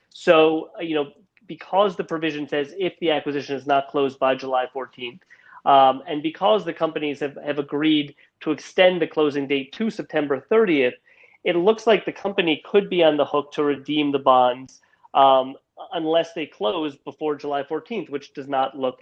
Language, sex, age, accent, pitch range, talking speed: English, male, 30-49, American, 140-170 Hz, 180 wpm